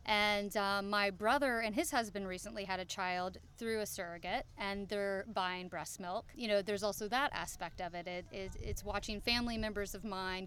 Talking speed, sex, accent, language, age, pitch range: 200 wpm, female, American, English, 30-49, 190-220 Hz